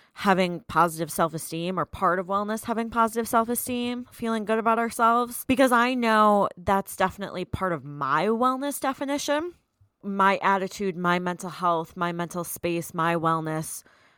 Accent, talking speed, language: American, 145 wpm, English